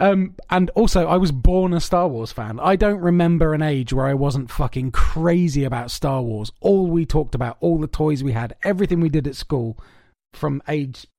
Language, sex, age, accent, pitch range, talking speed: English, male, 30-49, British, 130-170 Hz, 210 wpm